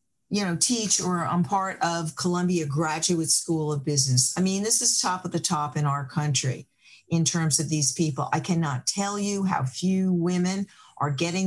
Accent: American